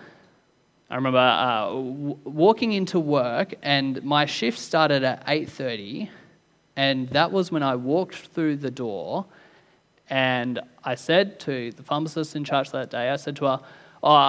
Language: English